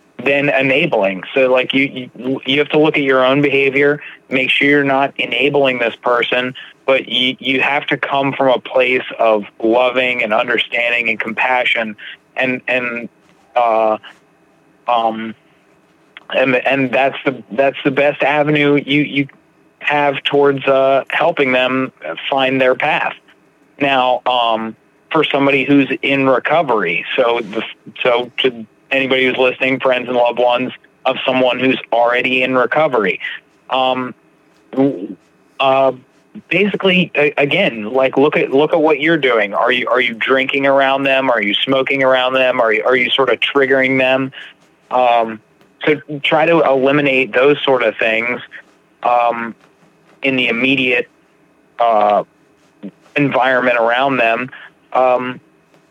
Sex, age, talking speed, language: male, 30-49, 140 wpm, English